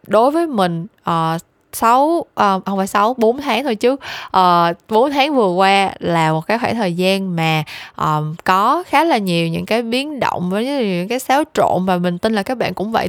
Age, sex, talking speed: 10-29, female, 210 wpm